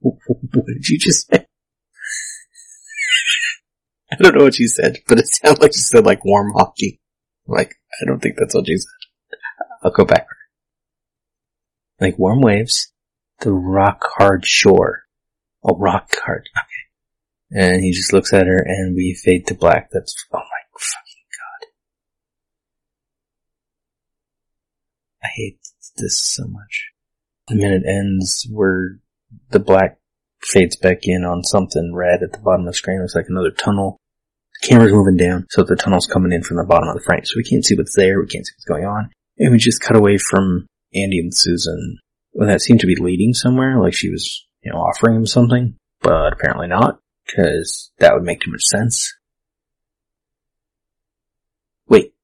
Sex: male